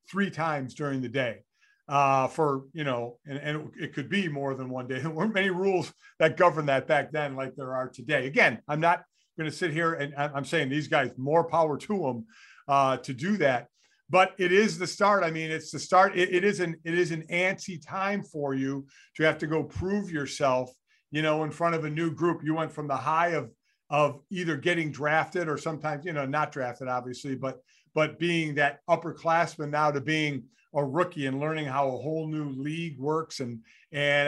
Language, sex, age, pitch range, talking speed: English, male, 50-69, 145-175 Hz, 215 wpm